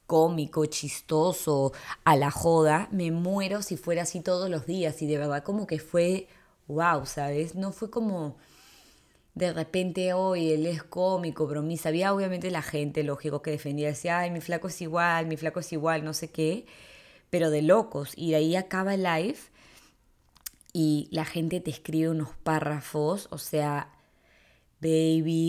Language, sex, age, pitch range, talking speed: English, female, 20-39, 155-170 Hz, 165 wpm